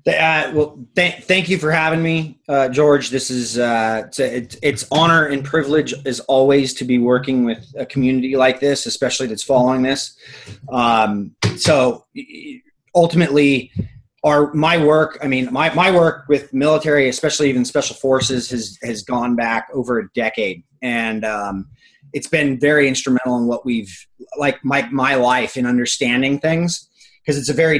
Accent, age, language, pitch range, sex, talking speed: American, 30-49, English, 125-155 Hz, male, 165 wpm